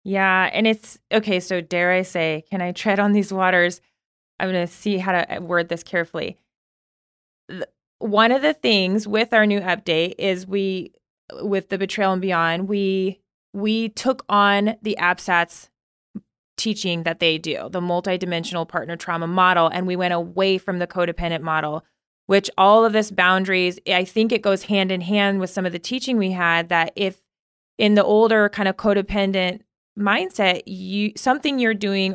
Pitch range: 175-205 Hz